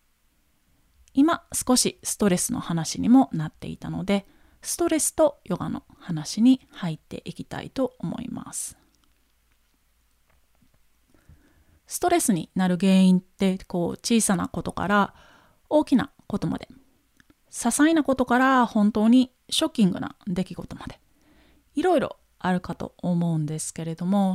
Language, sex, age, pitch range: Japanese, female, 30-49, 185-255 Hz